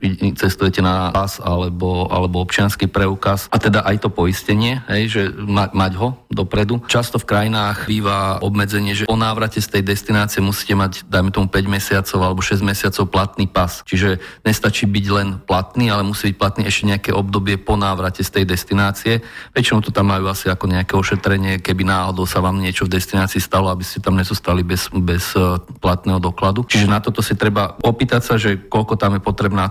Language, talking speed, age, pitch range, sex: Slovak, 185 wpm, 30-49, 95-105 Hz, male